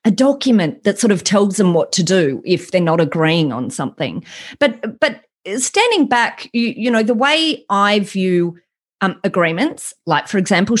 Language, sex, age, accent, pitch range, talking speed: English, female, 30-49, Australian, 180-235 Hz, 180 wpm